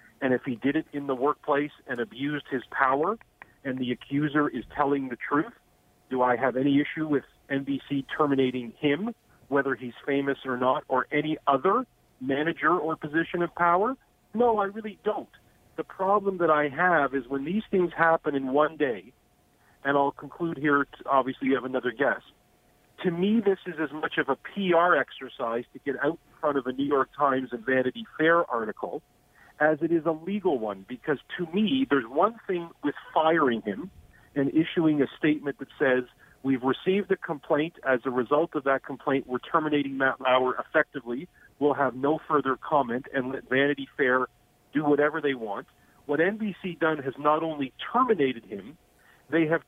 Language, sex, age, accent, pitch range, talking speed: English, male, 40-59, American, 130-165 Hz, 180 wpm